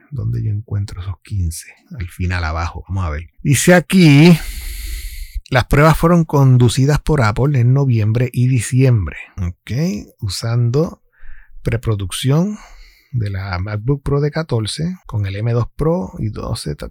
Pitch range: 105-150 Hz